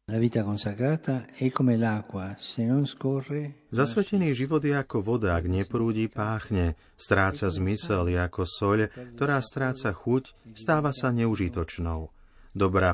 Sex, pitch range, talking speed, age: male, 95-120 Hz, 95 wpm, 30-49